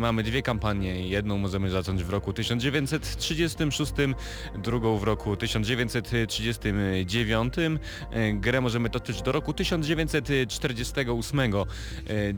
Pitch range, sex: 105-130 Hz, male